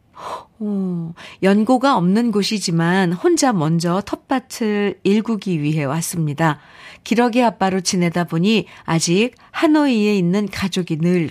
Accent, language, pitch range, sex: native, Korean, 170-225 Hz, female